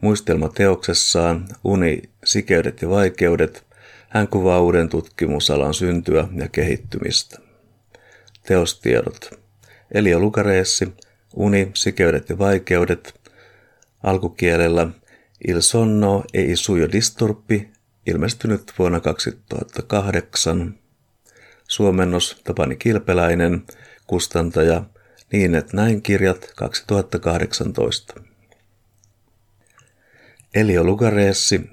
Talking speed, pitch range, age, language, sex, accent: 70 wpm, 85-105 Hz, 50-69, Finnish, male, native